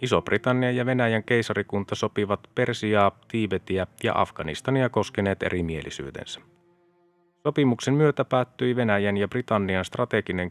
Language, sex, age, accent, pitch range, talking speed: Finnish, male, 30-49, native, 105-125 Hz, 115 wpm